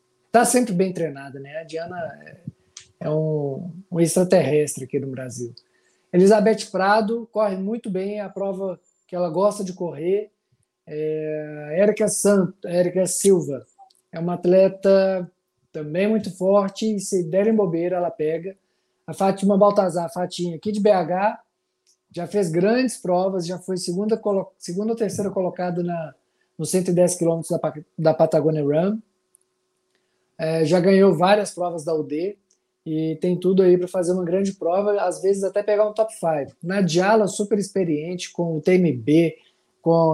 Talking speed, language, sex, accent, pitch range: 150 wpm, Portuguese, male, Brazilian, 160-195 Hz